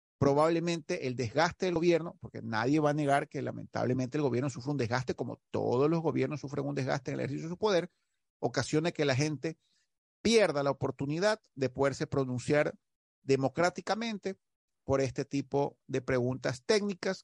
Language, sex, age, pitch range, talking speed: Spanish, male, 40-59, 130-180 Hz, 165 wpm